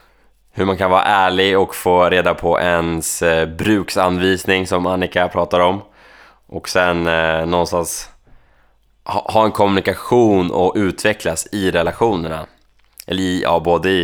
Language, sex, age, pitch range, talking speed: Swedish, male, 20-39, 85-95 Hz, 120 wpm